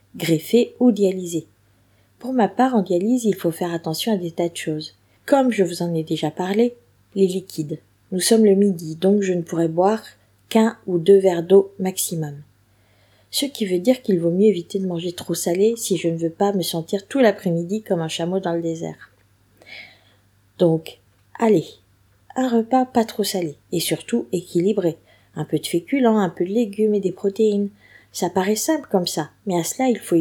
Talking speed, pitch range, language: 195 wpm, 165-215 Hz, French